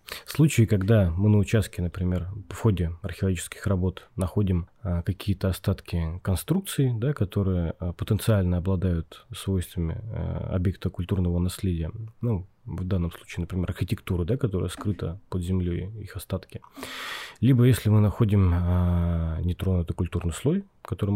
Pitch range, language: 90-105 Hz, Russian